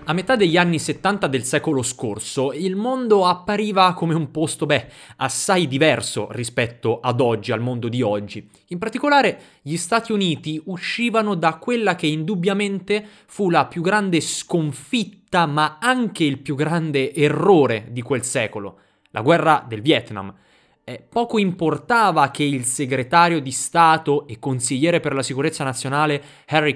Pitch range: 125-160 Hz